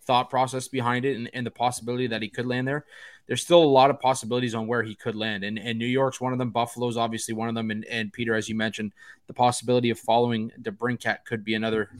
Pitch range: 110-130 Hz